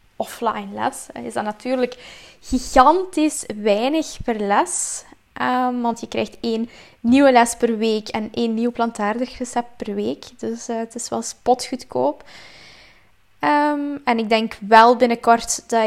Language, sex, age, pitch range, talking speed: Dutch, female, 10-29, 225-260 Hz, 135 wpm